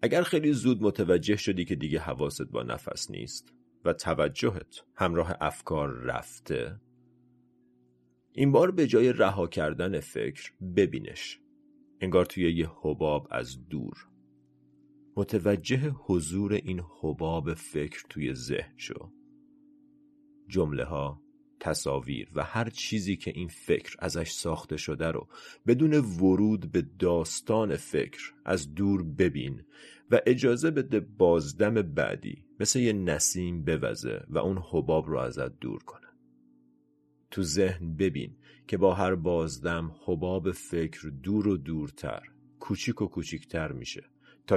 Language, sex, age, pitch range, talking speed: Persian, male, 40-59, 75-115 Hz, 125 wpm